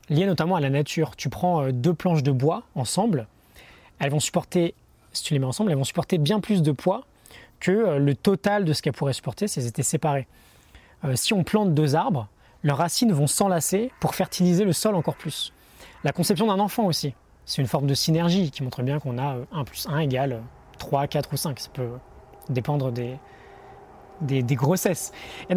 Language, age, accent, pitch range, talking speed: French, 20-39, French, 140-200 Hz, 200 wpm